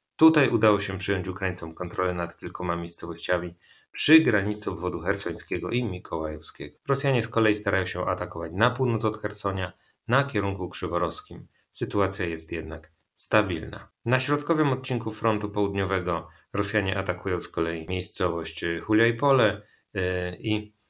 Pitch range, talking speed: 90-110 Hz, 125 wpm